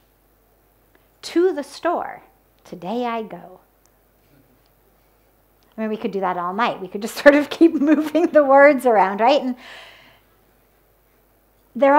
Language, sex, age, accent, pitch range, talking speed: English, female, 50-69, American, 195-280 Hz, 135 wpm